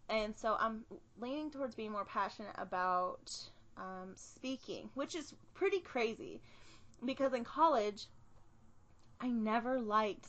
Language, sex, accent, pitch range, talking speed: English, female, American, 190-245 Hz, 120 wpm